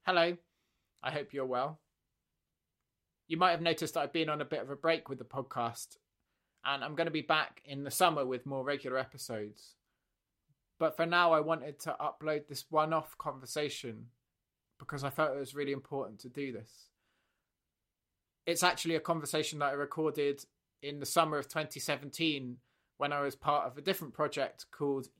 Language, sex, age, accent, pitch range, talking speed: English, male, 20-39, British, 130-155 Hz, 180 wpm